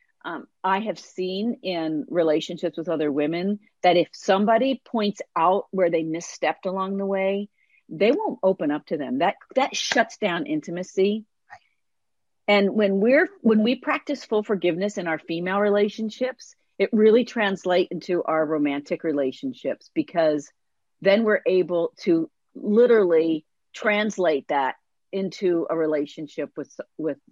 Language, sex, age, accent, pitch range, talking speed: English, female, 50-69, American, 170-230 Hz, 140 wpm